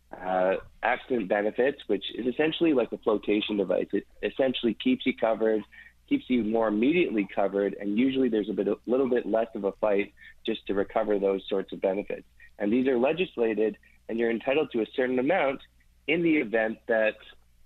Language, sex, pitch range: English, male, 100-120 Hz